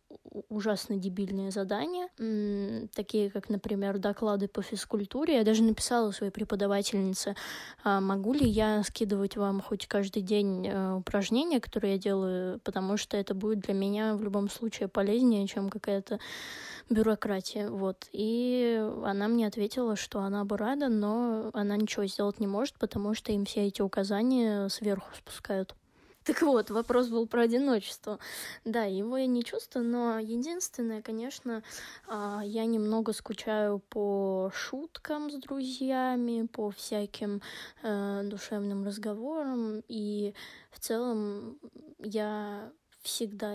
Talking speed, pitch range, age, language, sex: 125 wpm, 205-230 Hz, 20-39, Russian, female